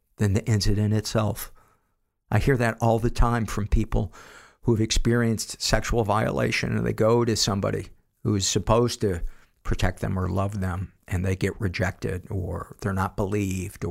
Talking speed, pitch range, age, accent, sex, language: 170 wpm, 95-110 Hz, 50-69, American, male, English